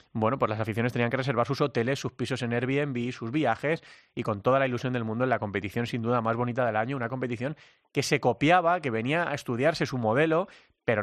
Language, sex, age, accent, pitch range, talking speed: Spanish, male, 30-49, Spanish, 110-135 Hz, 235 wpm